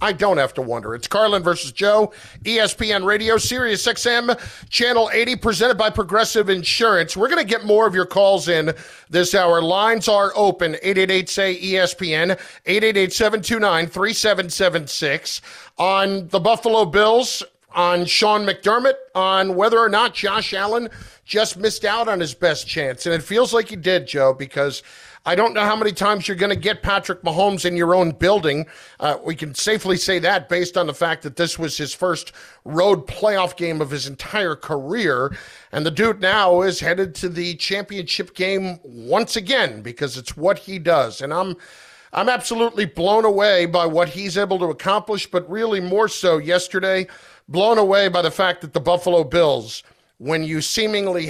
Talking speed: 185 wpm